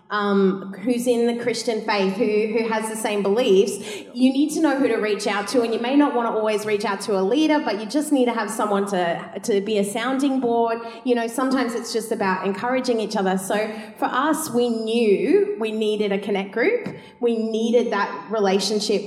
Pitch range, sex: 205-270 Hz, female